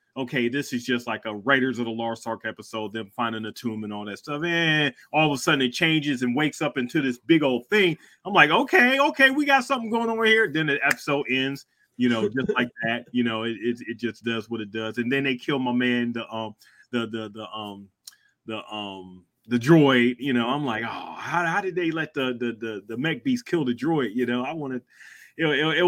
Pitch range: 120-165 Hz